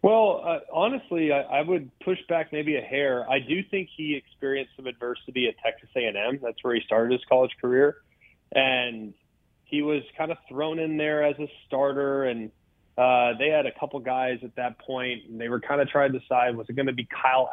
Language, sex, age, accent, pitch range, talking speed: English, male, 30-49, American, 125-150 Hz, 215 wpm